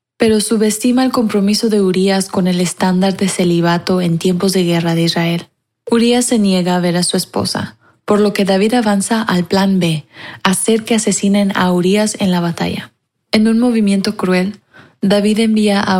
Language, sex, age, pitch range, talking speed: Spanish, female, 20-39, 180-210 Hz, 180 wpm